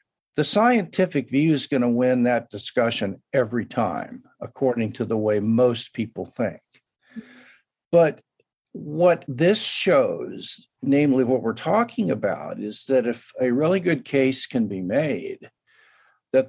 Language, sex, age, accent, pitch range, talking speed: English, male, 60-79, American, 125-185 Hz, 140 wpm